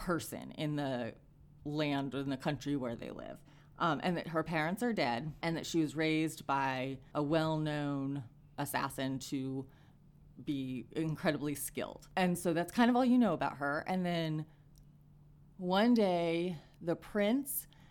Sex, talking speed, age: female, 160 wpm, 30-49